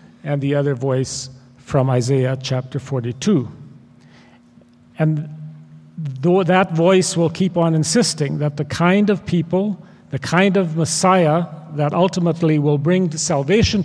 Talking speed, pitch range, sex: 125 wpm, 135-160 Hz, male